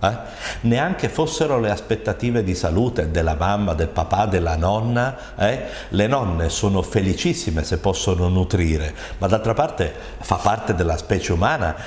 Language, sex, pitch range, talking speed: Italian, male, 90-115 Hz, 145 wpm